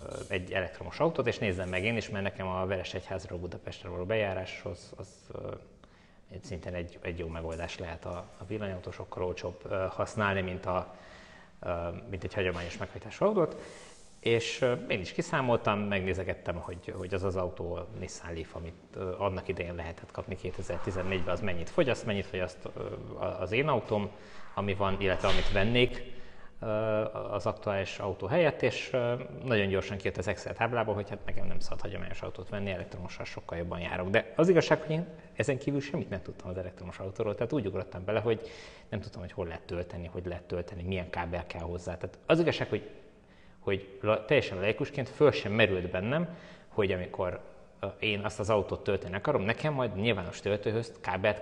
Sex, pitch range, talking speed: male, 90-110 Hz, 170 wpm